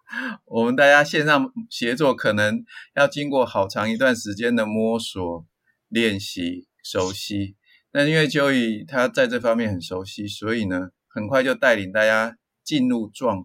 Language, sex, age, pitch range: Chinese, male, 20-39, 105-145 Hz